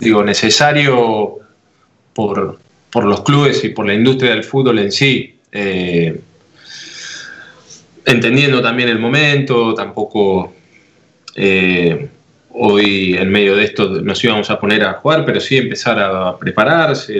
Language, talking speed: Spanish, 130 wpm